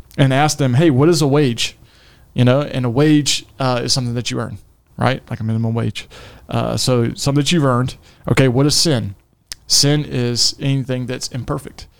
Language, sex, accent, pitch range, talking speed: English, male, American, 115-130 Hz, 195 wpm